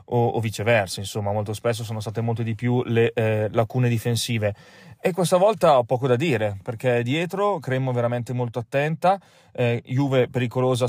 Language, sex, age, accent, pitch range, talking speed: Italian, male, 30-49, native, 115-135 Hz, 165 wpm